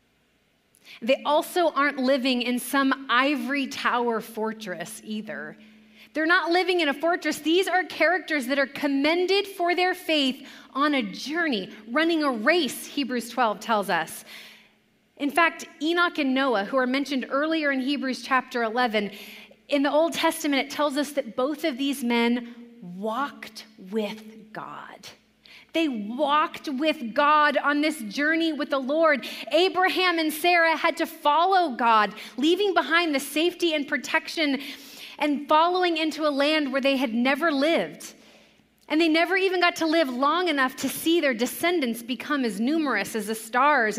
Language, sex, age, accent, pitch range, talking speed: English, female, 30-49, American, 245-320 Hz, 155 wpm